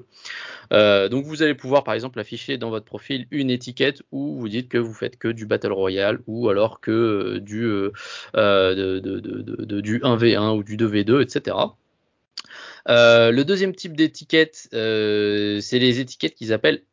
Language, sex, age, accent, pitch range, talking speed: French, male, 20-39, French, 110-135 Hz, 180 wpm